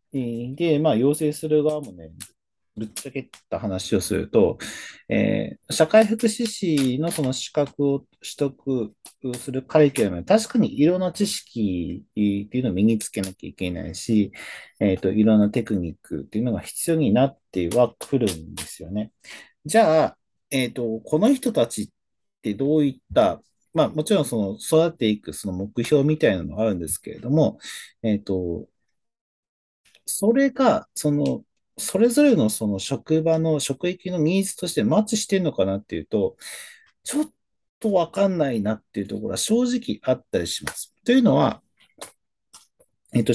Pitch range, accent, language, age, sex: 105-180 Hz, native, Japanese, 40-59, male